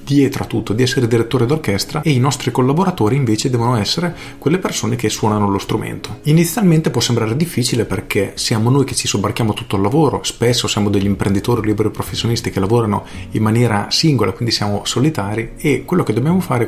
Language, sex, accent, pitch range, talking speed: Italian, male, native, 110-140 Hz, 185 wpm